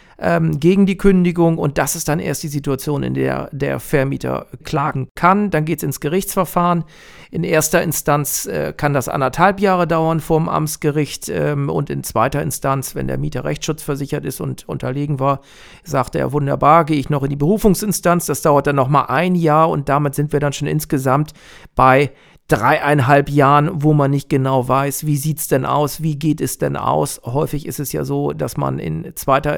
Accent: German